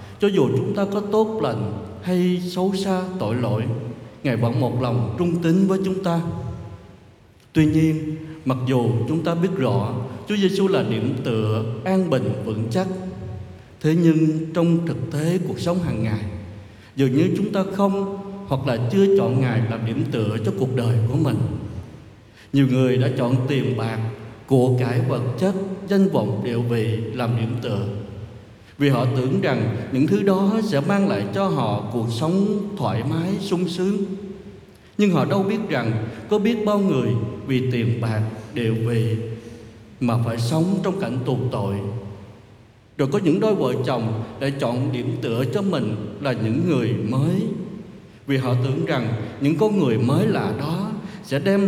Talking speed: 175 wpm